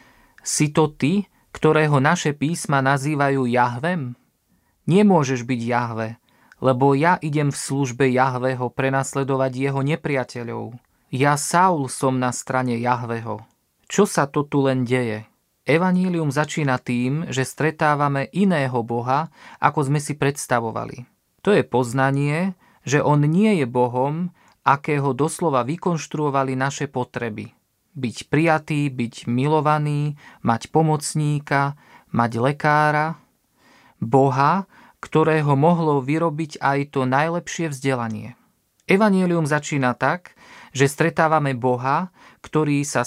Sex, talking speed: male, 110 wpm